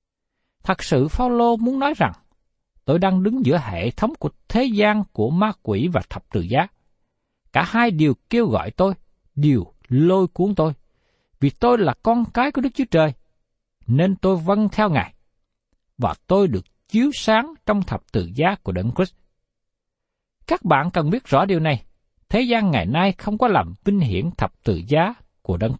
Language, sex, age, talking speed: Vietnamese, male, 60-79, 185 wpm